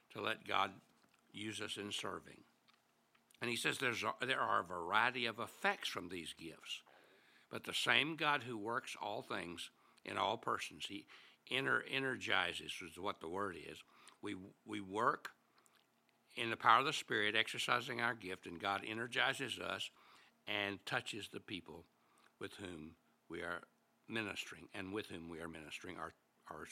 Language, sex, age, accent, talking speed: English, male, 60-79, American, 165 wpm